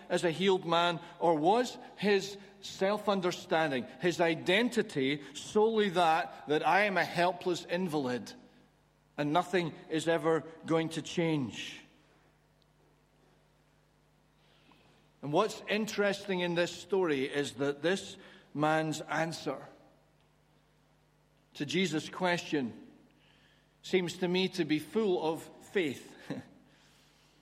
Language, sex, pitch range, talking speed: English, male, 165-205 Hz, 105 wpm